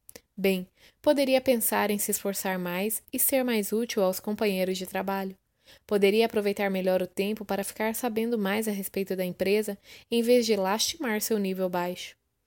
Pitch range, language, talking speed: 190-220 Hz, Portuguese, 170 wpm